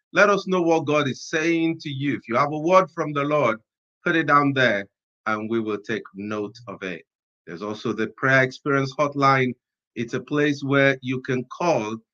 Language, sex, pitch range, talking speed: English, male, 120-165 Hz, 205 wpm